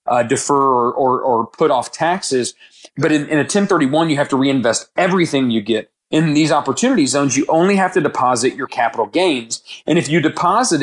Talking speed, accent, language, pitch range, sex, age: 200 wpm, American, English, 135-160 Hz, male, 30-49